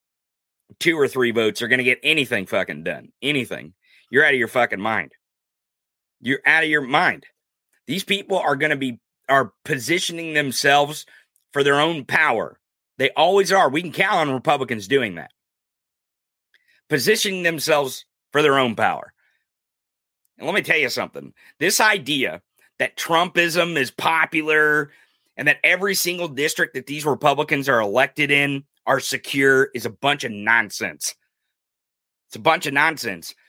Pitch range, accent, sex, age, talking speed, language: 135-170 Hz, American, male, 30-49, 150 wpm, English